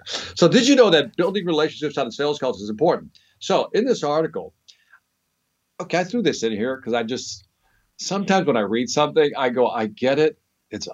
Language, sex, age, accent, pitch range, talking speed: English, male, 50-69, American, 115-170 Hz, 205 wpm